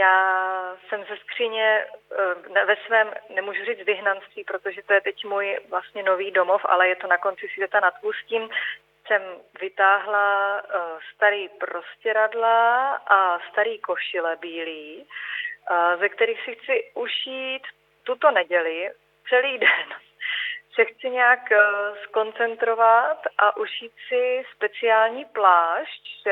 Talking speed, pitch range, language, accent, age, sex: 115 wpm, 190-240 Hz, Czech, native, 30-49, female